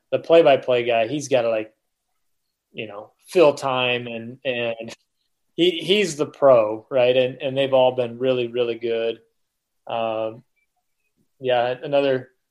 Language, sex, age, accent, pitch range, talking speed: English, male, 20-39, American, 120-145 Hz, 140 wpm